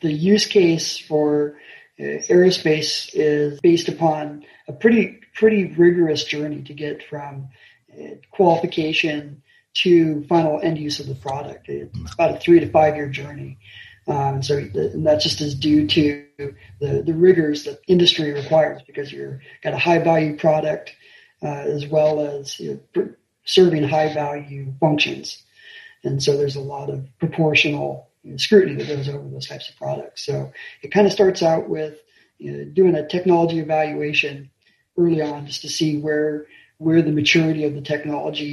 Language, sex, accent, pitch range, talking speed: English, male, American, 145-165 Hz, 165 wpm